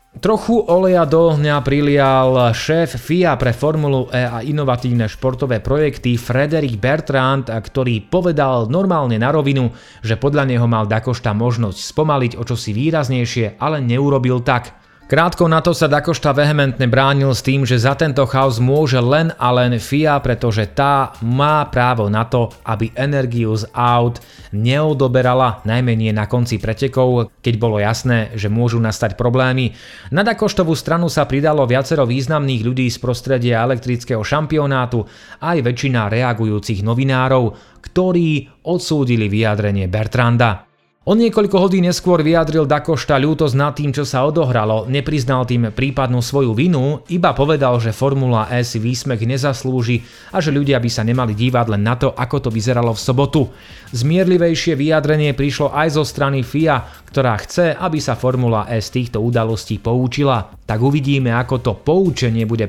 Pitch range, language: 115-145 Hz, Slovak